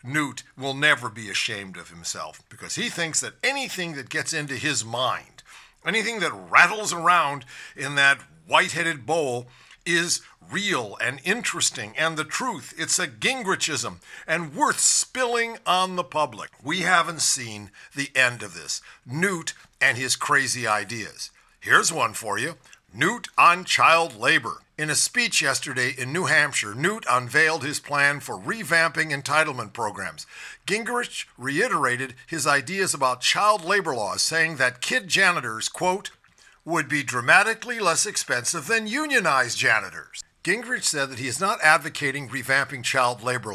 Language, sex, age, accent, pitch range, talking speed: English, male, 50-69, American, 130-175 Hz, 145 wpm